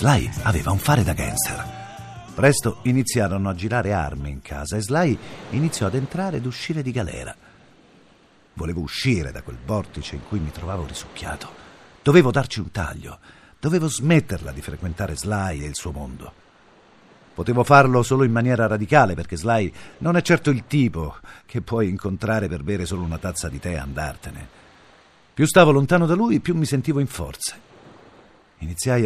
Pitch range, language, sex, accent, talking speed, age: 85-130 Hz, Italian, male, native, 165 wpm, 50-69